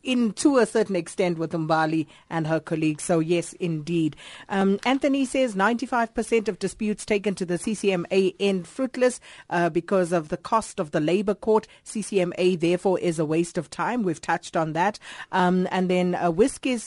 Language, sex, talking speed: English, female, 180 wpm